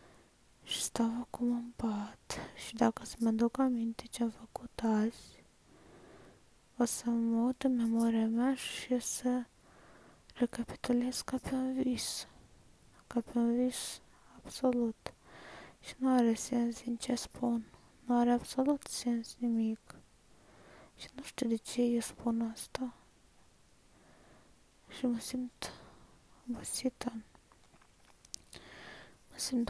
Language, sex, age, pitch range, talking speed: Romanian, female, 20-39, 235-255 Hz, 115 wpm